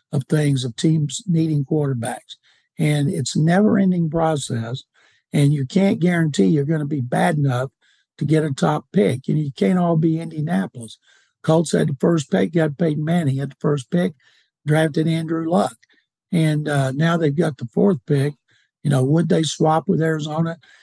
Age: 60-79